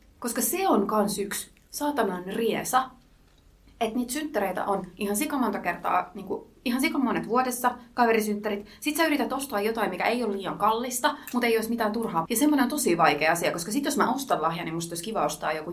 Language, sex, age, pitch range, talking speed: Finnish, female, 30-49, 190-245 Hz, 205 wpm